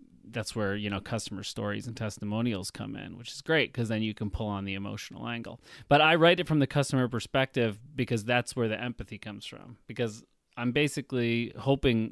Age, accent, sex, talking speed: 30-49, American, male, 205 wpm